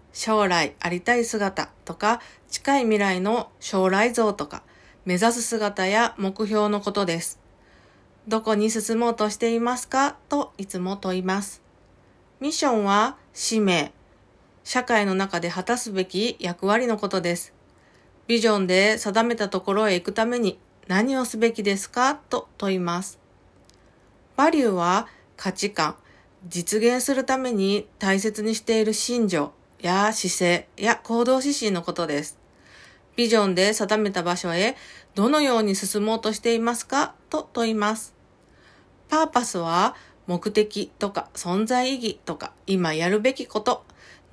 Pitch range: 185-235 Hz